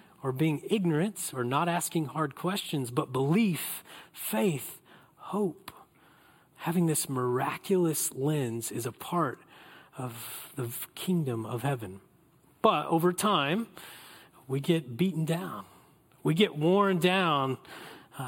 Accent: American